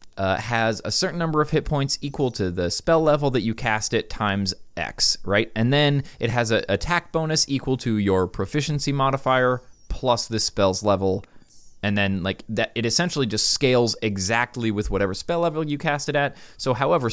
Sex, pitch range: male, 100-135 Hz